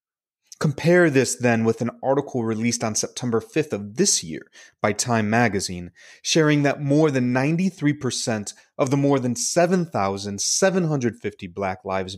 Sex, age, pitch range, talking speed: male, 30-49, 110-145 Hz, 140 wpm